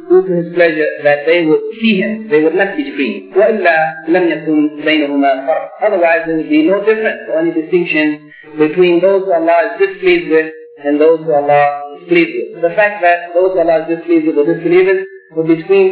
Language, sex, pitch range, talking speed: English, male, 150-200 Hz, 190 wpm